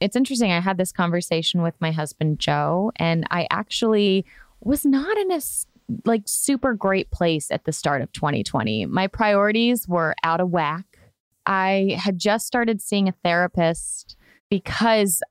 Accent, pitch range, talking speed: American, 160-195 Hz, 155 wpm